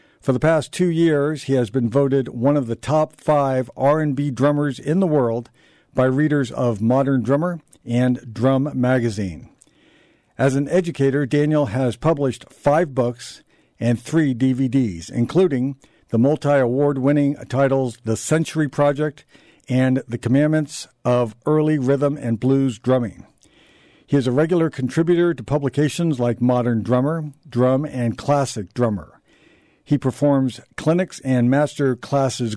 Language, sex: English, male